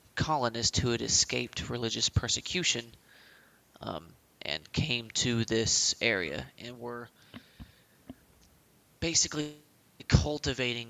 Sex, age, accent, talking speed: male, 20-39, American, 90 wpm